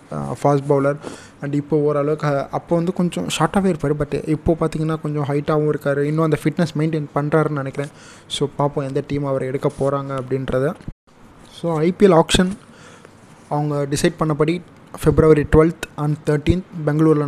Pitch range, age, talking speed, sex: 145-165 Hz, 20-39, 140 wpm, male